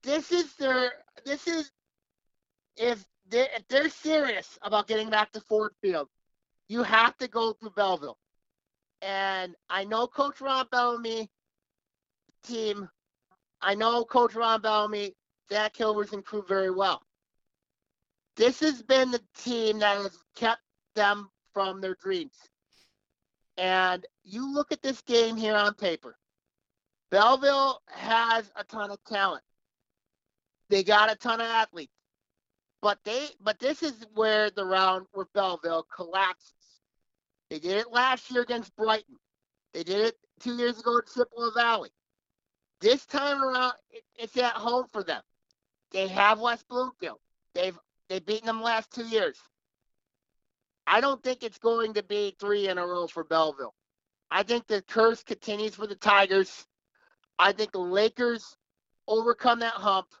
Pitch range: 200-245 Hz